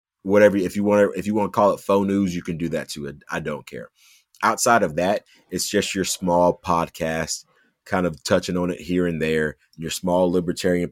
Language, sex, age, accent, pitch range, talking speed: English, male, 30-49, American, 85-105 Hz, 220 wpm